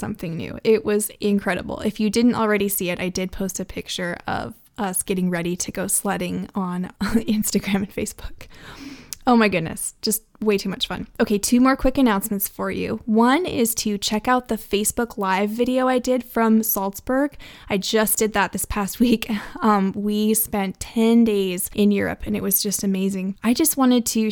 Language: English